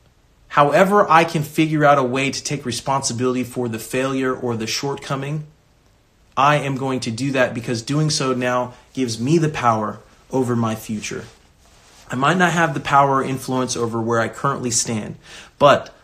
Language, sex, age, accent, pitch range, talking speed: English, male, 30-49, American, 115-135 Hz, 175 wpm